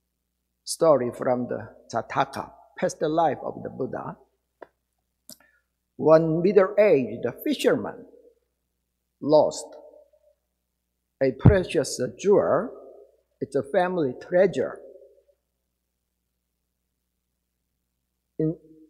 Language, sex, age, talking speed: English, male, 60-79, 75 wpm